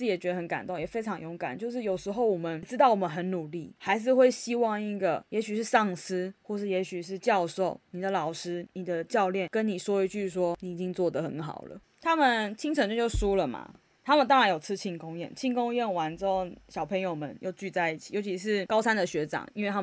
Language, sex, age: Chinese, female, 20-39